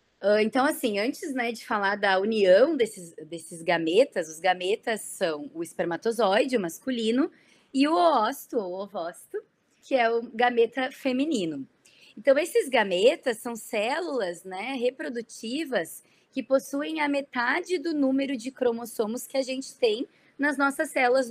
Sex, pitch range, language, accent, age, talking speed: female, 215-290 Hz, Portuguese, Brazilian, 20-39, 140 wpm